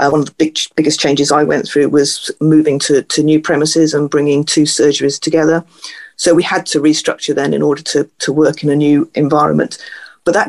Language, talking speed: English, 215 wpm